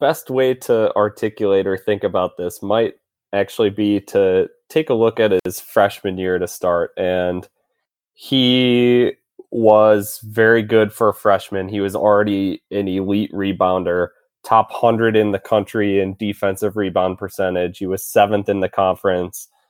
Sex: male